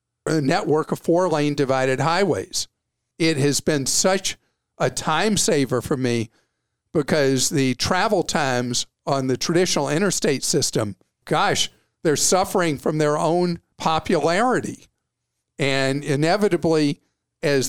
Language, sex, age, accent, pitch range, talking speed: English, male, 50-69, American, 135-170 Hz, 115 wpm